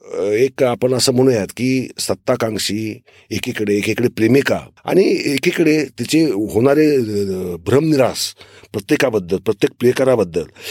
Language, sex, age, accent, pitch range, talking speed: Marathi, male, 40-59, native, 115-165 Hz, 95 wpm